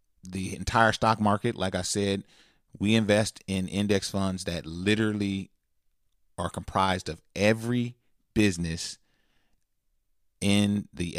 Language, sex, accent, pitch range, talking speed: English, male, American, 95-115 Hz, 115 wpm